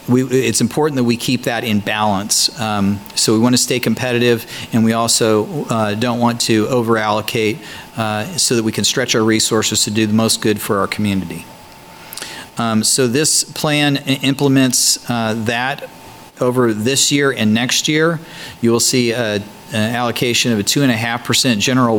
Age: 40-59